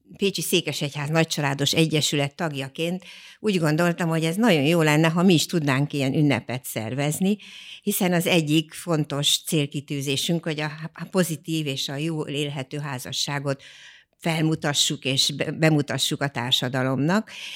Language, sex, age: Hungarian, female, 60-79